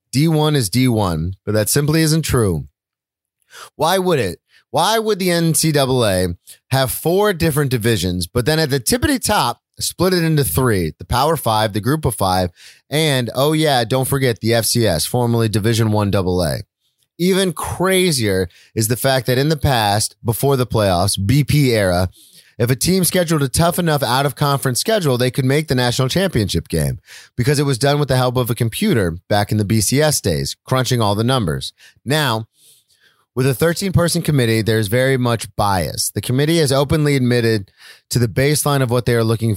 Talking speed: 185 wpm